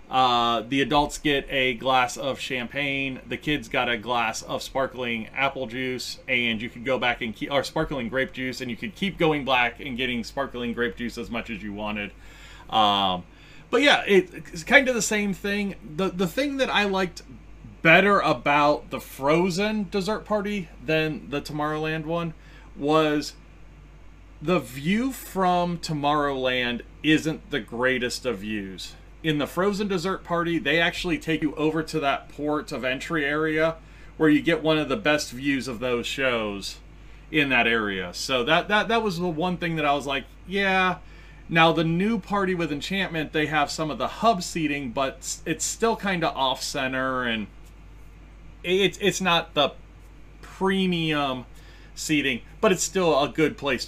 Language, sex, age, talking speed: English, male, 30-49, 175 wpm